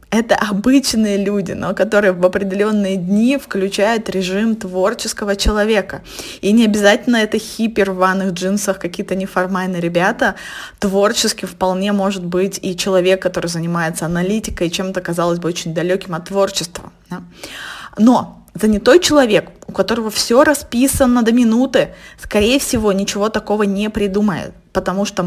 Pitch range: 180-215 Hz